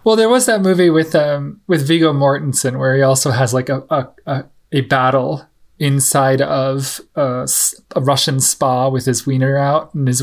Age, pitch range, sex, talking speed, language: 20-39, 140-170 Hz, male, 180 wpm, English